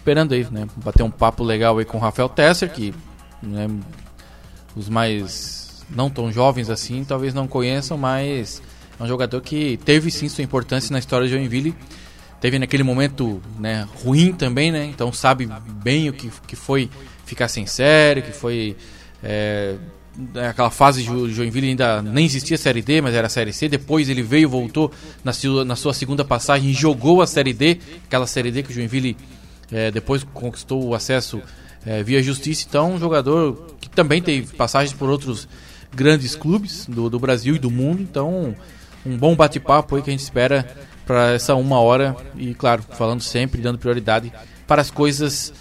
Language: Portuguese